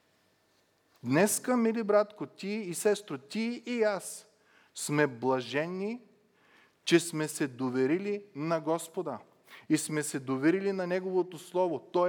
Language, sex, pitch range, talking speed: Bulgarian, male, 135-185 Hz, 125 wpm